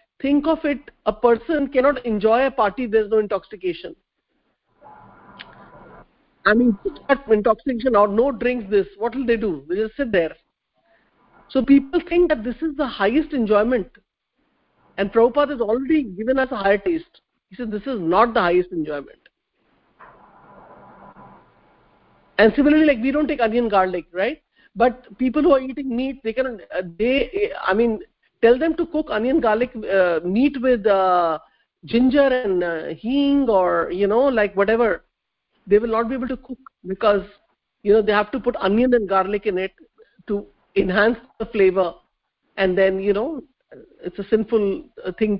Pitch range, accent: 195-270 Hz, Indian